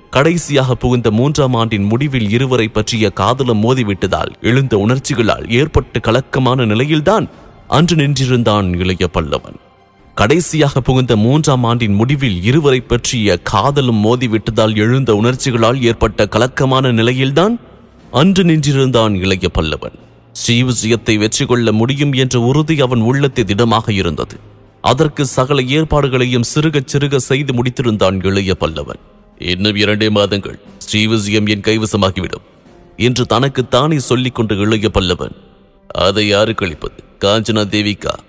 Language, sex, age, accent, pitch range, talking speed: English, male, 30-49, Indian, 105-130 Hz, 110 wpm